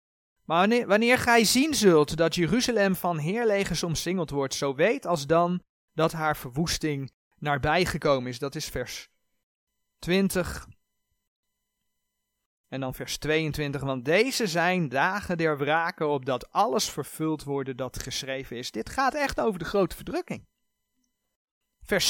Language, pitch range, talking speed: Dutch, 140-230 Hz, 135 wpm